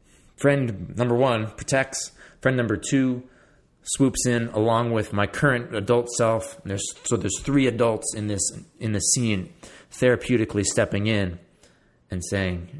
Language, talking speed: English, 140 wpm